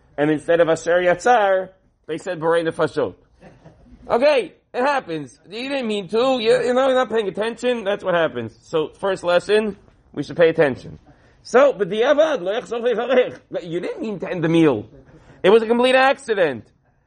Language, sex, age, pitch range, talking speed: English, male, 40-59, 170-240 Hz, 170 wpm